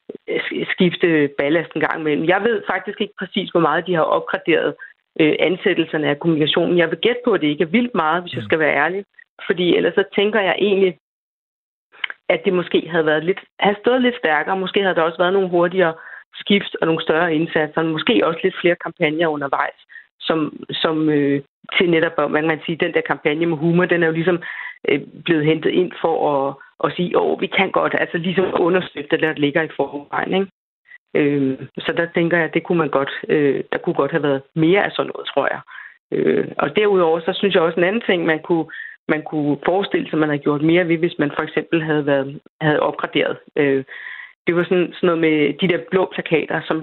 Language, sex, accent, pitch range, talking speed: Danish, female, native, 150-185 Hz, 215 wpm